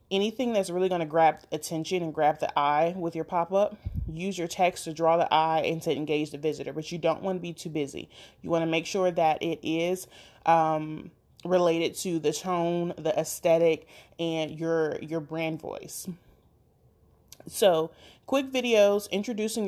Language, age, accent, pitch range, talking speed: English, 30-49, American, 160-190 Hz, 175 wpm